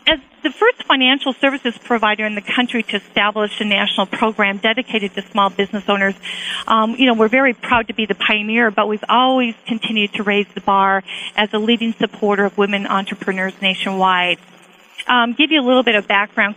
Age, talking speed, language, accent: 40-59, 190 wpm, English, American